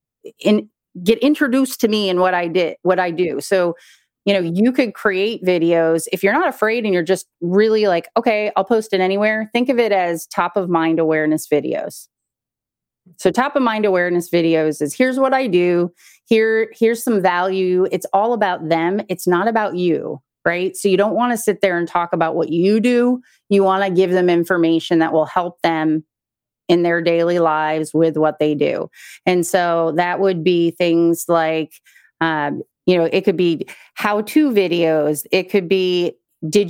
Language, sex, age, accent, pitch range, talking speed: English, female, 30-49, American, 170-215 Hz, 190 wpm